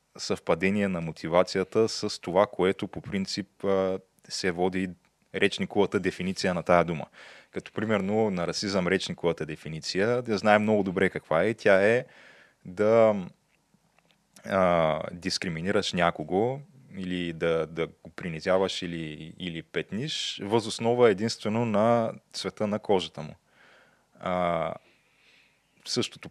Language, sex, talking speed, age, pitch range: Bulgarian, male, 115 wpm, 20-39, 85-105 Hz